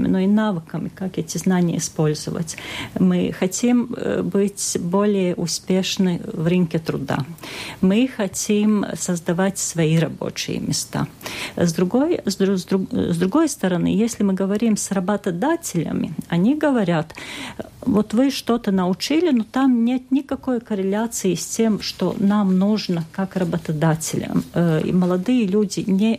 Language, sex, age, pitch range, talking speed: Russian, female, 40-59, 175-220 Hz, 115 wpm